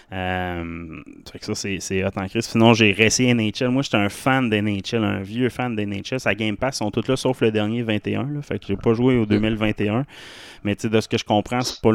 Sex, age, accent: male, 20-39, Canadian